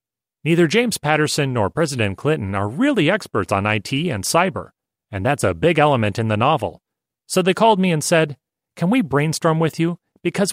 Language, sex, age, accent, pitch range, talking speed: English, male, 40-59, American, 115-165 Hz, 190 wpm